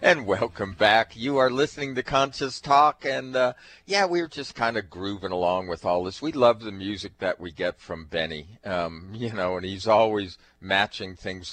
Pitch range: 95-130 Hz